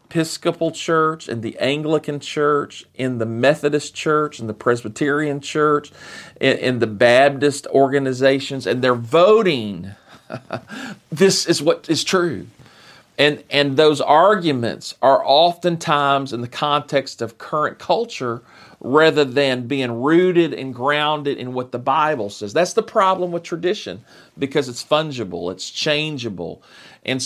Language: English